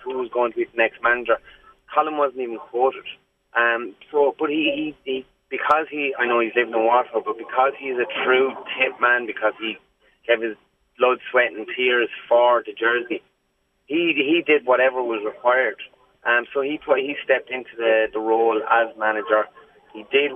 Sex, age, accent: male, 30-49, Irish